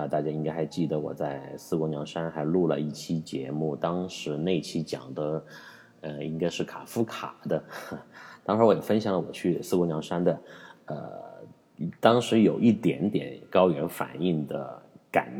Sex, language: male, Chinese